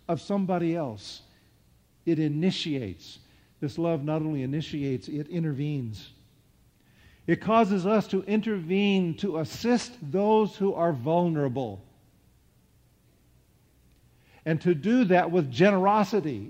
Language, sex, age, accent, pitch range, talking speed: English, male, 50-69, American, 140-185 Hz, 105 wpm